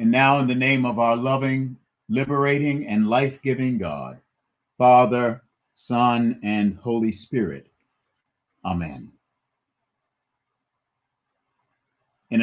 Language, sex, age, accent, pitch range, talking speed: English, male, 50-69, American, 105-125 Hz, 90 wpm